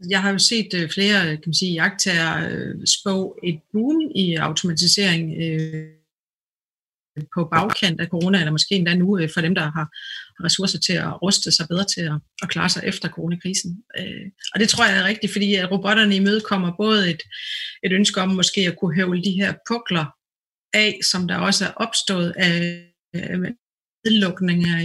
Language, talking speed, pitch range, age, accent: Danish, 155 wpm, 175-200 Hz, 40-59, native